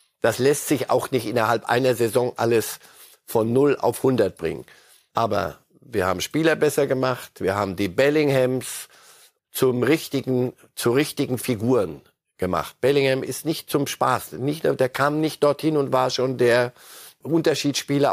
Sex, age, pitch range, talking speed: male, 50-69, 110-140 Hz, 150 wpm